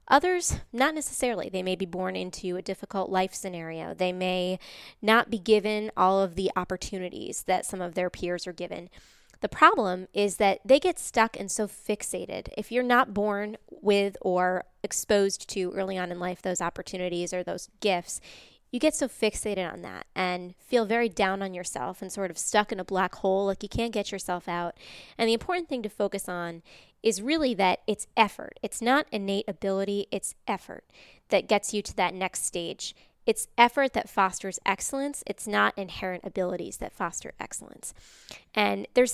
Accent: American